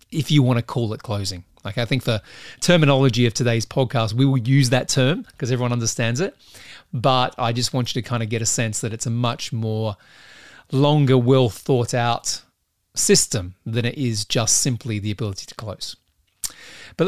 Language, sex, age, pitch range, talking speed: English, male, 30-49, 110-135 Hz, 195 wpm